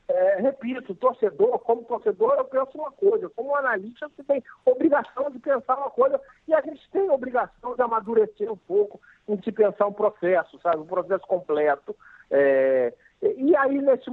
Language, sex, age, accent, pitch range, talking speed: Portuguese, male, 50-69, Brazilian, 185-275 Hz, 165 wpm